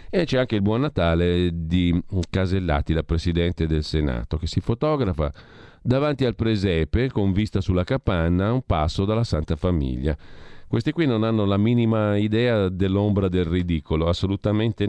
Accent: native